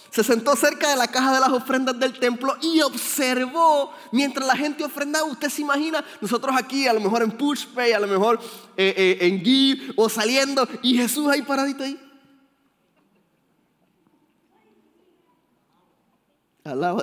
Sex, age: male, 20-39